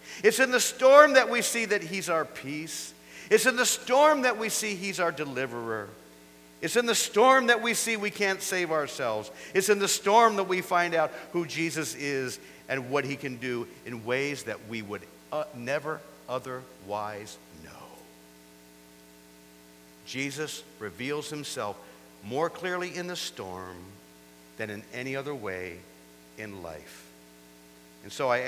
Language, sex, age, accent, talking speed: English, male, 50-69, American, 155 wpm